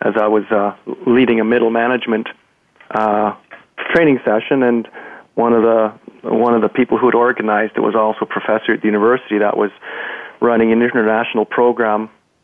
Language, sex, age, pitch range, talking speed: English, male, 40-59, 105-120 Hz, 175 wpm